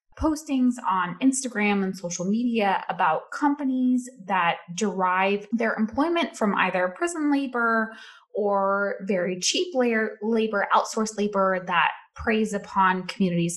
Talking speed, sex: 120 wpm, female